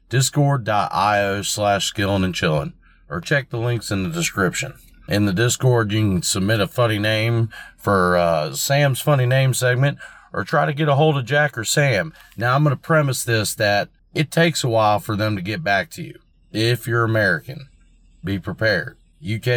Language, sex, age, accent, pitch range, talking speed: English, male, 40-59, American, 105-140 Hz, 185 wpm